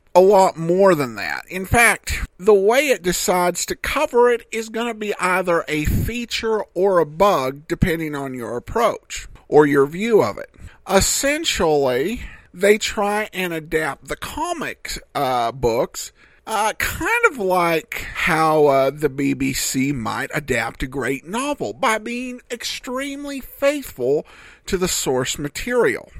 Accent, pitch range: American, 150-220 Hz